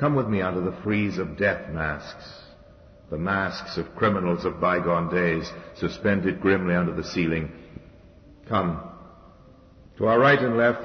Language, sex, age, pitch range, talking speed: English, male, 60-79, 80-100 Hz, 150 wpm